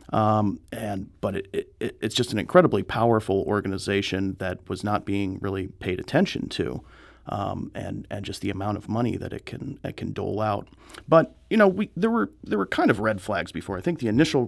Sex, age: male, 40-59